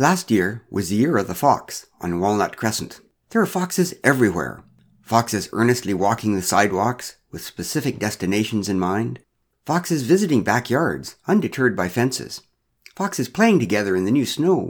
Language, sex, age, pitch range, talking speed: English, male, 60-79, 100-160 Hz, 155 wpm